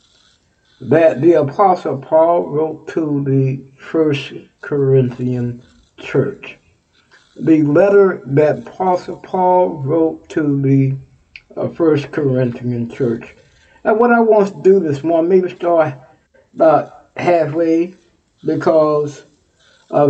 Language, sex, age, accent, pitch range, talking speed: English, male, 60-79, American, 140-180 Hz, 105 wpm